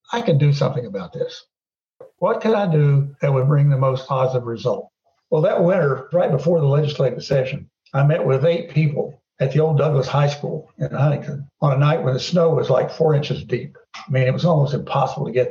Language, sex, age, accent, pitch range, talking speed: English, male, 60-79, American, 140-165 Hz, 220 wpm